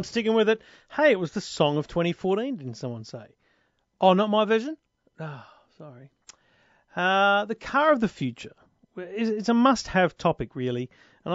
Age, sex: 40-59, male